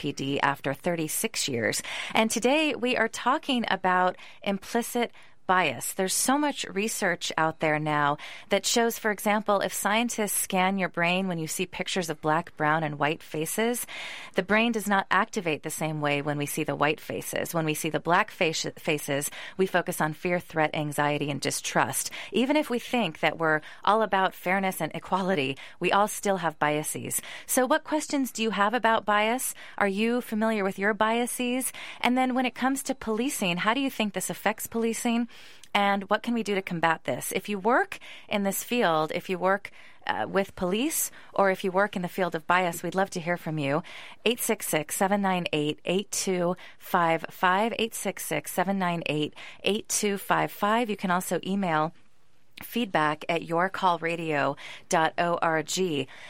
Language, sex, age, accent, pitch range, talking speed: English, female, 30-49, American, 165-225 Hz, 165 wpm